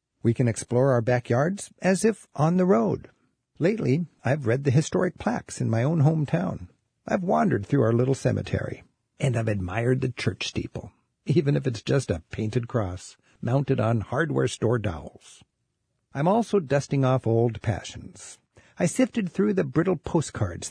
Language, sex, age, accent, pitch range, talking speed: English, male, 60-79, American, 115-165 Hz, 160 wpm